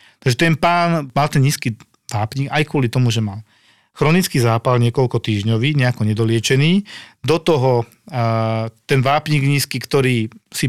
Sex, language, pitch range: male, Slovak, 120-145 Hz